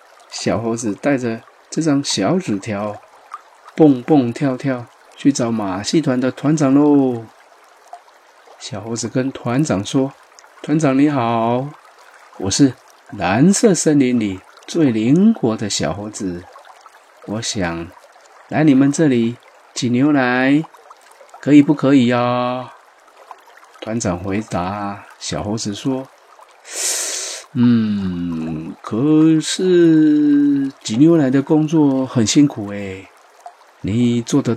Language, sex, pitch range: Chinese, male, 110-145 Hz